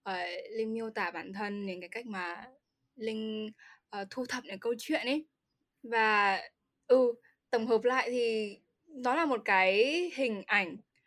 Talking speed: 150 wpm